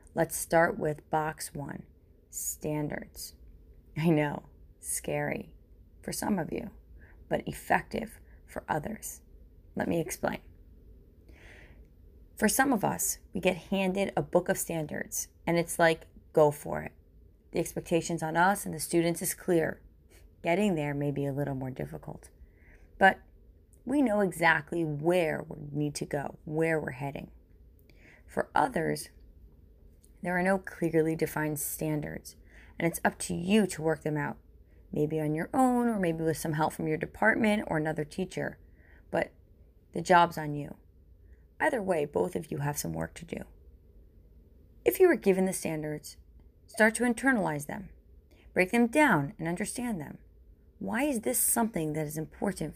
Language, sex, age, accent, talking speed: English, female, 30-49, American, 155 wpm